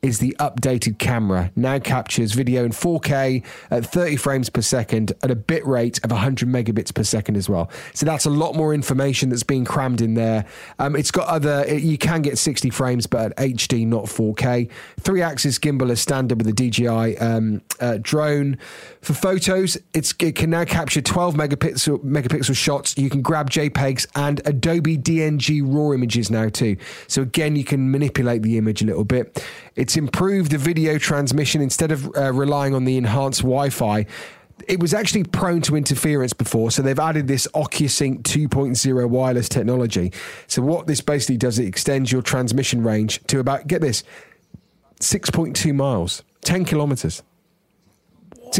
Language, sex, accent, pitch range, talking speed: English, male, British, 120-150 Hz, 170 wpm